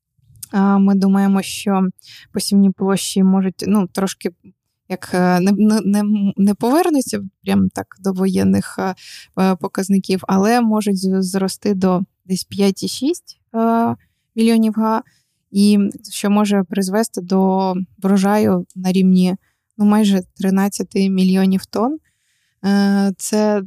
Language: Ukrainian